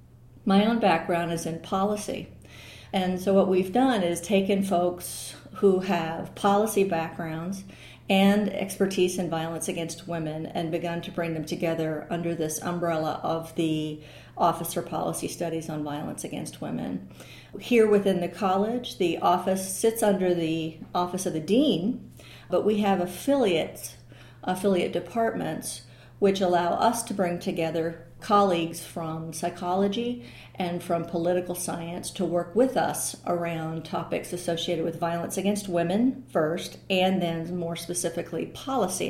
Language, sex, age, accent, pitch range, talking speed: English, female, 50-69, American, 170-195 Hz, 140 wpm